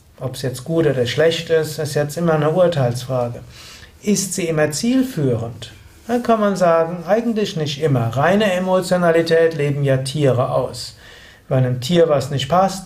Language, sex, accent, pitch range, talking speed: German, male, German, 135-185 Hz, 165 wpm